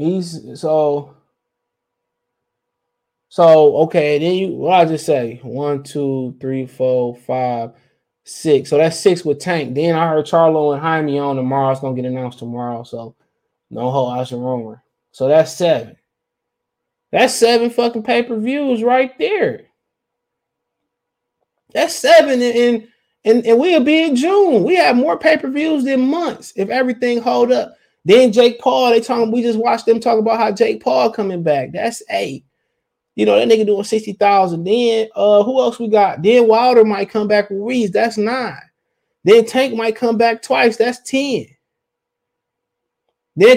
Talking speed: 165 wpm